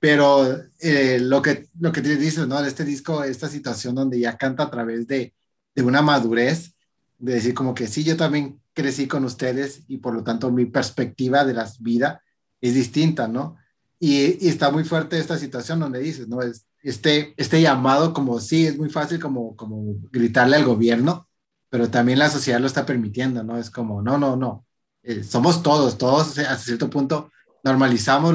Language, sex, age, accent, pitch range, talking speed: Spanish, male, 30-49, Mexican, 120-150 Hz, 195 wpm